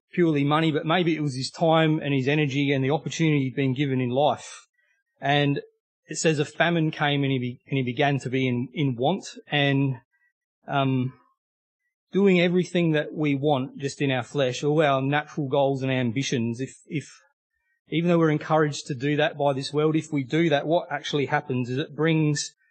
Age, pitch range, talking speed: 30-49, 135-165 Hz, 200 wpm